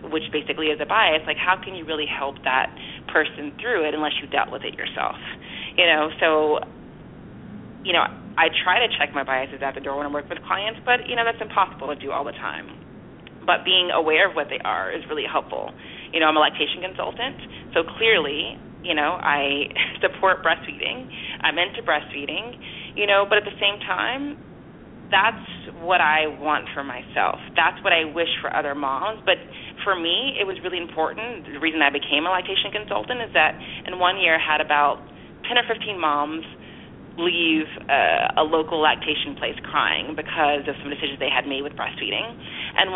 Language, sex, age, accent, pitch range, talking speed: English, female, 30-49, American, 150-195 Hz, 195 wpm